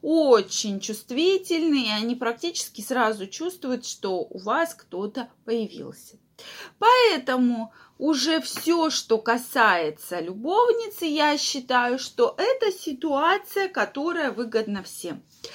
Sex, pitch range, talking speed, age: female, 225-320 Hz, 95 wpm, 20-39